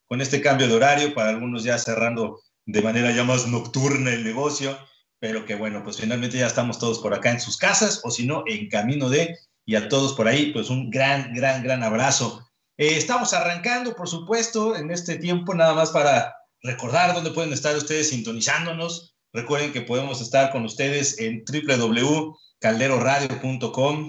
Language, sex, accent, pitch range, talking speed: Spanish, male, Mexican, 120-165 Hz, 175 wpm